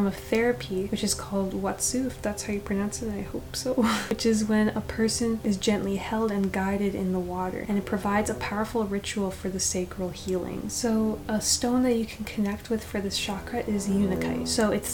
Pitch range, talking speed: 195-220 Hz, 215 wpm